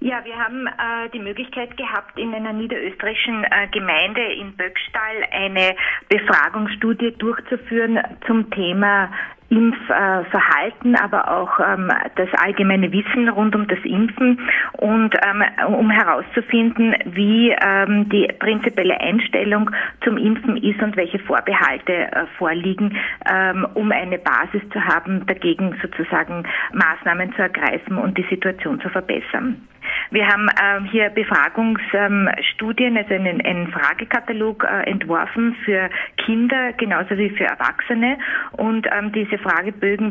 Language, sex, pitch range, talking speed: German, female, 190-230 Hz, 110 wpm